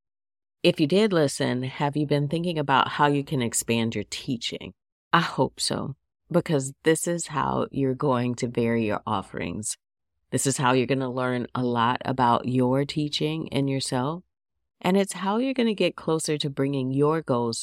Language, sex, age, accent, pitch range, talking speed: English, female, 40-59, American, 125-150 Hz, 185 wpm